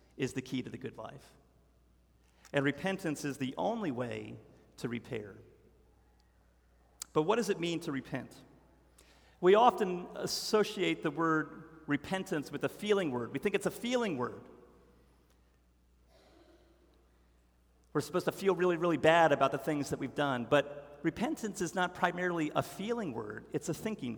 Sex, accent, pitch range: male, American, 135-205 Hz